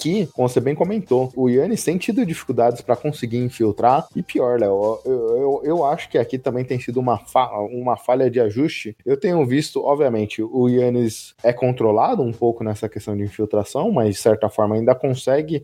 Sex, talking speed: male, 195 wpm